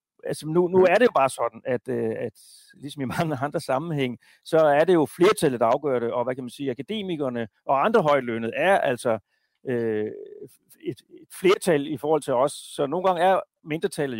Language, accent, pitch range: Danish, native, 125-155 Hz